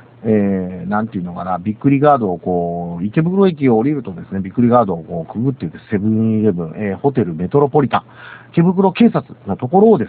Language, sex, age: Japanese, male, 50-69